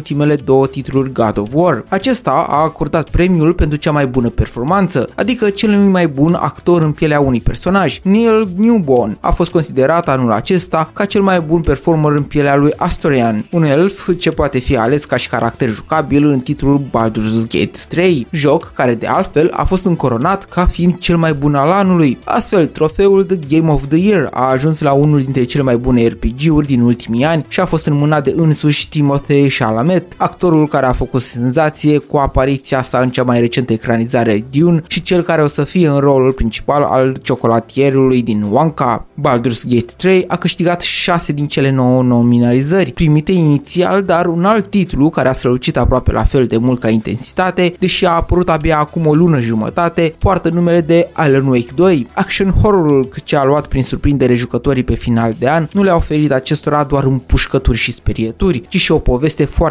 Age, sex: 20-39, male